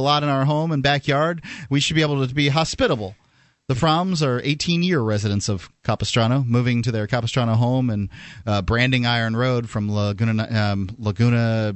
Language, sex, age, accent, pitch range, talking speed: English, male, 30-49, American, 110-135 Hz, 180 wpm